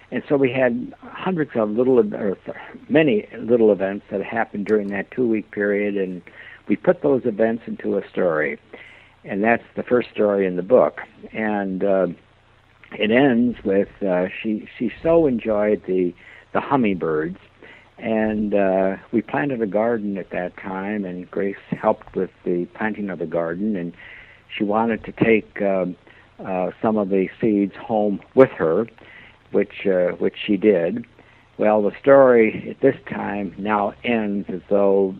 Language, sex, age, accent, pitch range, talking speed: English, male, 60-79, American, 95-110 Hz, 160 wpm